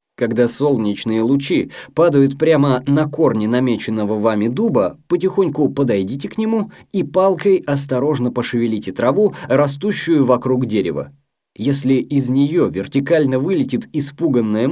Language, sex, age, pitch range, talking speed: Russian, male, 20-39, 120-180 Hz, 115 wpm